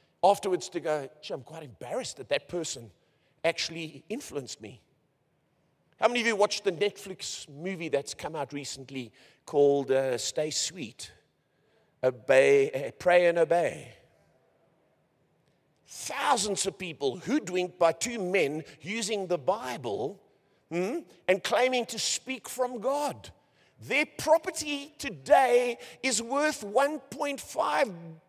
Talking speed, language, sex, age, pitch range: 115 wpm, English, male, 50-69, 170-265 Hz